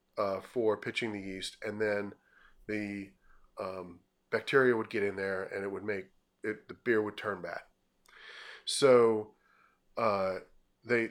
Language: English